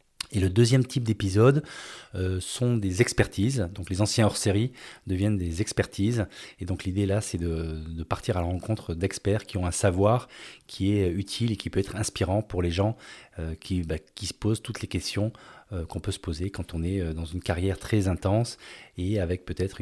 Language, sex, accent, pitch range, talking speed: French, male, French, 90-110 Hz, 205 wpm